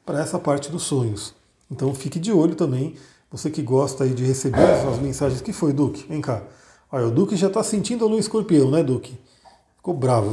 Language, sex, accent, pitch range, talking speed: Portuguese, male, Brazilian, 135-170 Hz, 215 wpm